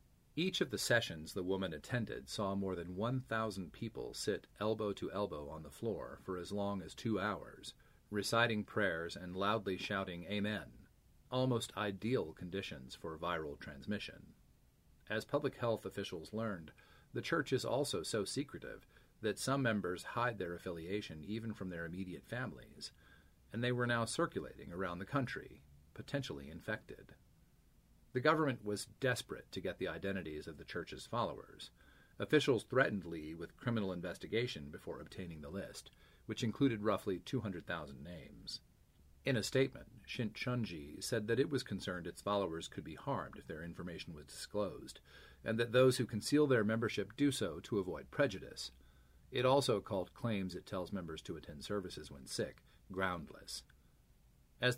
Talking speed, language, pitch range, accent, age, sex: 155 wpm, English, 85-115 Hz, American, 40-59, male